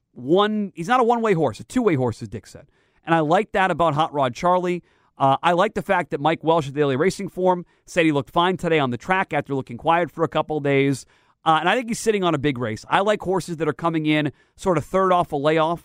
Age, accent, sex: 40-59, American, male